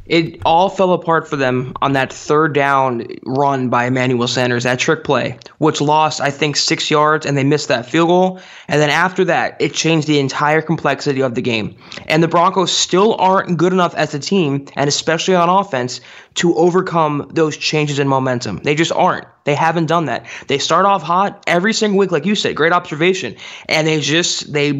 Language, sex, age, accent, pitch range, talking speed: English, male, 20-39, American, 145-180 Hz, 205 wpm